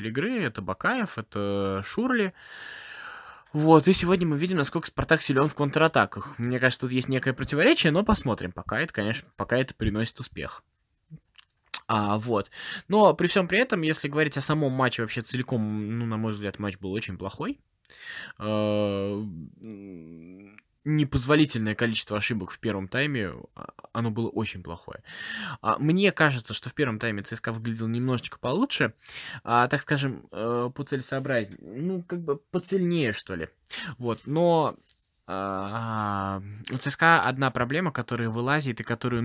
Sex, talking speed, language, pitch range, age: male, 140 wpm, Russian, 105-140 Hz, 20-39